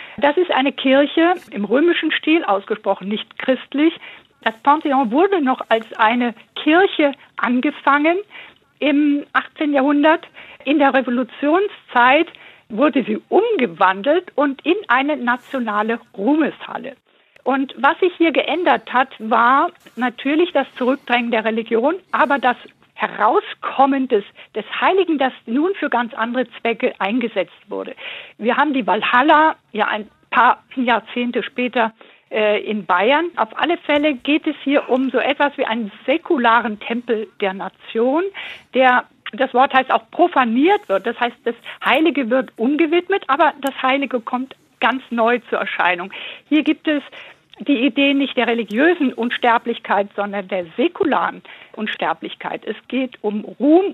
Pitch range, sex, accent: 235-305 Hz, female, German